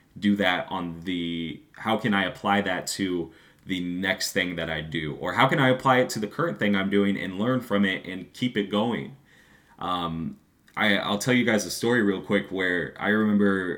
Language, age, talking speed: English, 20-39, 215 wpm